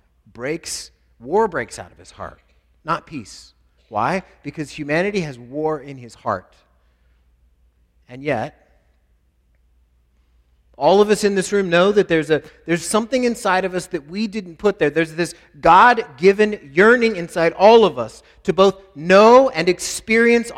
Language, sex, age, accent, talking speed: English, male, 40-59, American, 150 wpm